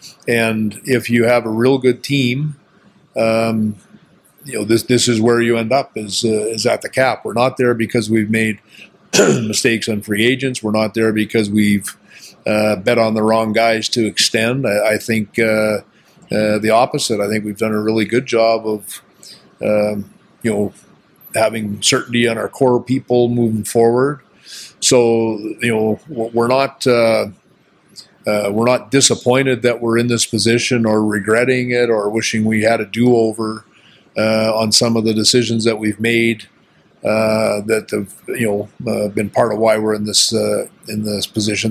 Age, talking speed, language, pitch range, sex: 50-69, 180 wpm, English, 110-120 Hz, male